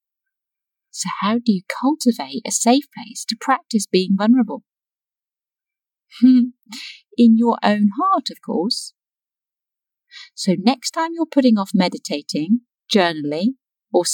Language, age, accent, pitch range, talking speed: English, 40-59, British, 190-250 Hz, 115 wpm